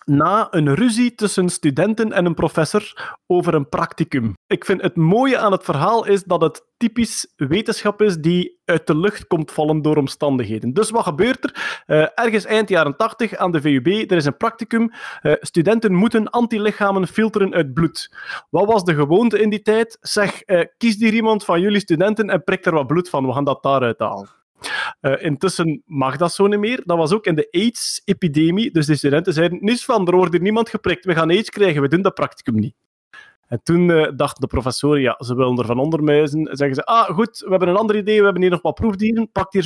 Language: Dutch